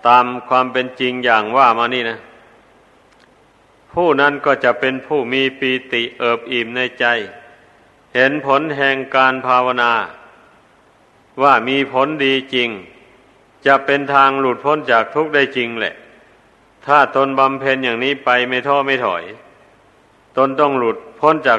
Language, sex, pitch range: Thai, male, 120-140 Hz